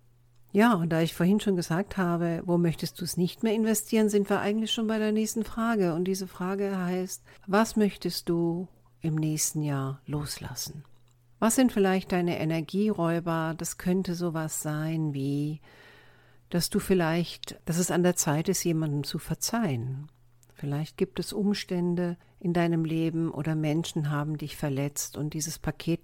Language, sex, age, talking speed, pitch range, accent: German, female, 50-69, 160 wpm, 145-190 Hz, German